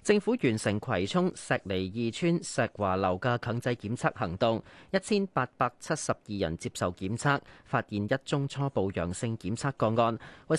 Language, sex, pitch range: Chinese, male, 105-145 Hz